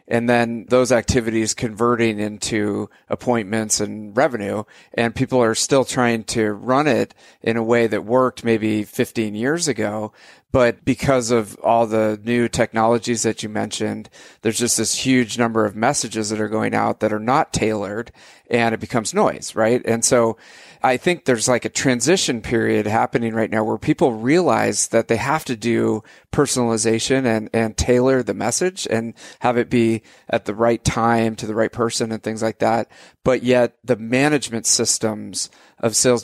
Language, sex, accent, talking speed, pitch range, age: English, male, American, 175 wpm, 110-125 Hz, 40-59